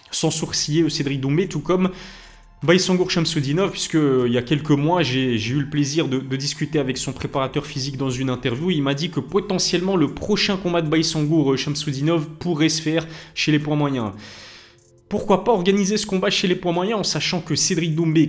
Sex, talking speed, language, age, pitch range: male, 195 wpm, French, 20-39, 135-165 Hz